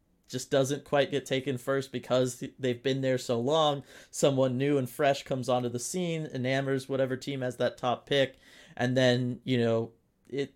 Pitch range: 120-140 Hz